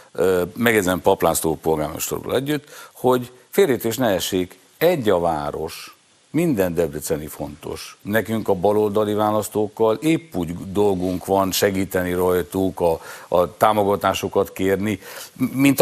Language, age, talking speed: Hungarian, 50-69, 110 wpm